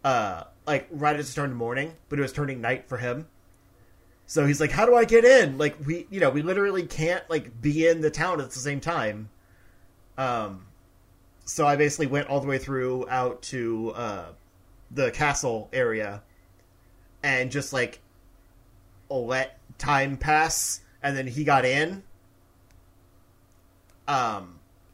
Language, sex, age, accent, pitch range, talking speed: English, male, 30-49, American, 95-140 Hz, 160 wpm